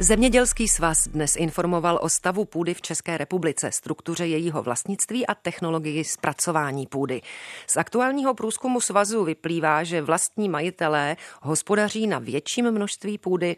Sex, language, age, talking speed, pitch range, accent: female, Czech, 40-59, 135 wpm, 145-180 Hz, native